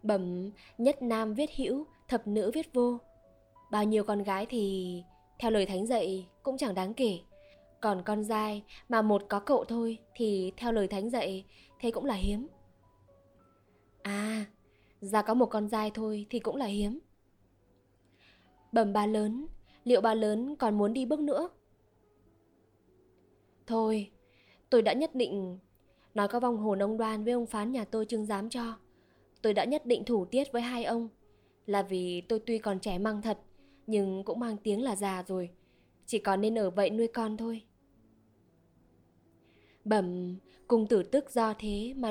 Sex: female